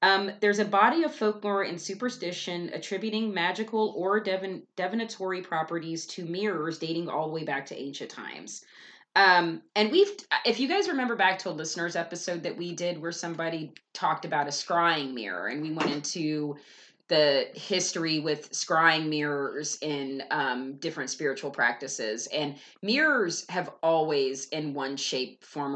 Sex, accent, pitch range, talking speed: female, American, 150-190 Hz, 155 wpm